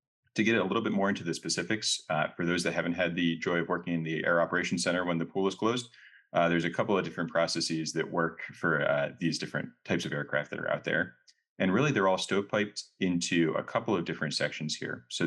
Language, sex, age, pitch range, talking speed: English, male, 30-49, 80-95 Hz, 245 wpm